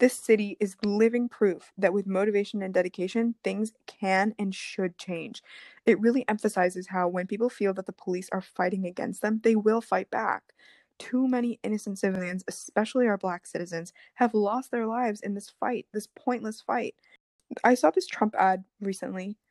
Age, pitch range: 20-39, 190-225 Hz